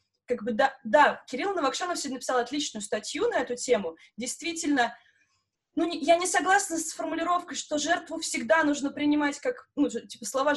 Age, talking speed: 20-39, 170 wpm